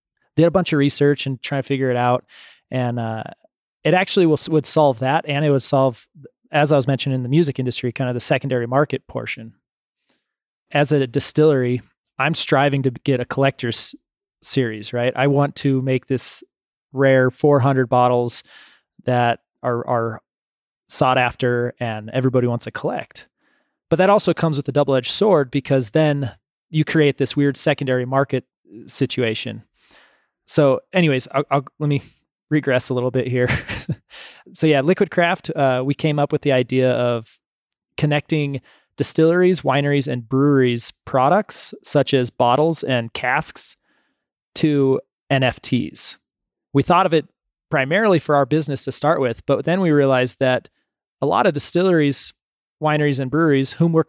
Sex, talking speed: male, 160 wpm